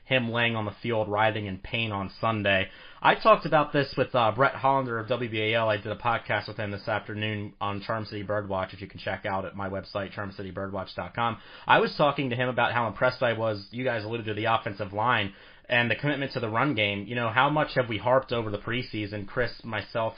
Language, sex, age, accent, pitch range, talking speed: English, male, 30-49, American, 105-125 Hz, 230 wpm